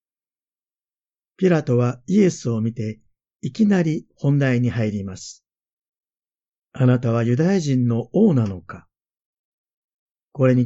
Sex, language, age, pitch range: male, Japanese, 50-69, 115-155 Hz